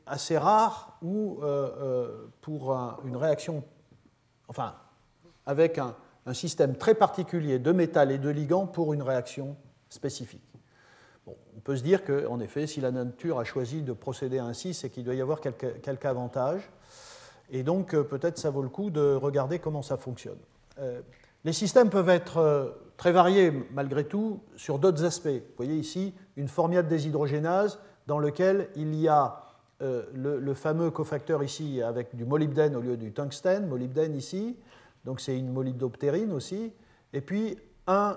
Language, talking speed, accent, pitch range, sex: French, 160 wpm, French, 135-175 Hz, male